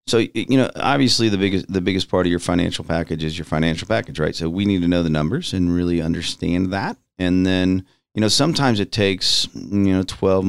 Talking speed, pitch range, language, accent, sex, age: 225 wpm, 80-100 Hz, English, American, male, 40-59